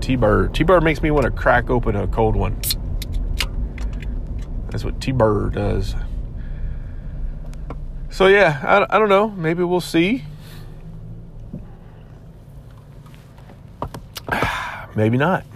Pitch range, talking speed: 105-140 Hz, 105 wpm